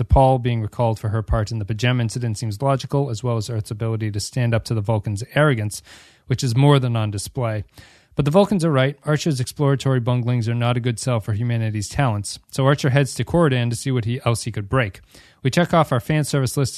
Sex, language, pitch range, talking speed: male, English, 110-140 Hz, 230 wpm